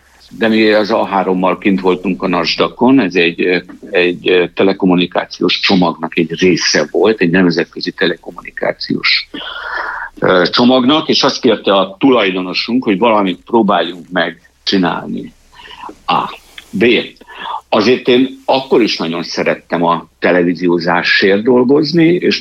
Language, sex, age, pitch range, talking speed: Hungarian, male, 60-79, 90-125 Hz, 110 wpm